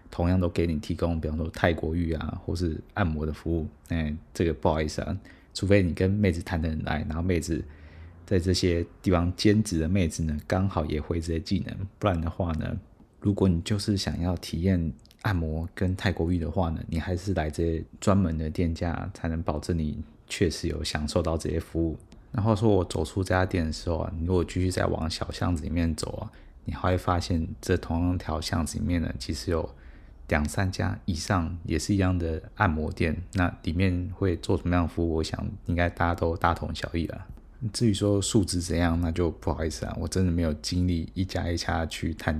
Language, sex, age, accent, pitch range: Chinese, male, 20-39, native, 80-95 Hz